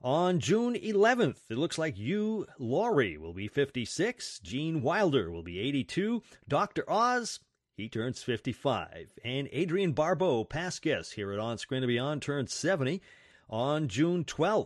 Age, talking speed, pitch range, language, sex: 40-59, 145 wpm, 120-180 Hz, English, male